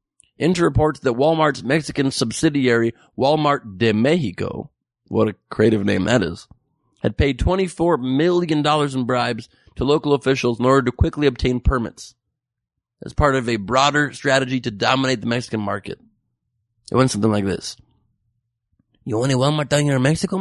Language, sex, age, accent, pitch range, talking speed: English, male, 30-49, American, 120-170 Hz, 160 wpm